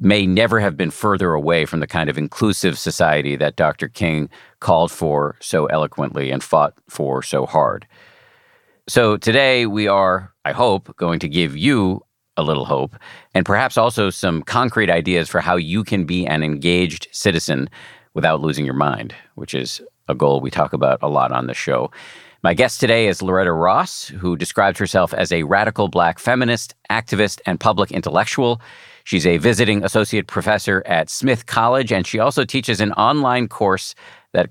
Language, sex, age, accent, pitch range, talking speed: English, male, 50-69, American, 85-120 Hz, 175 wpm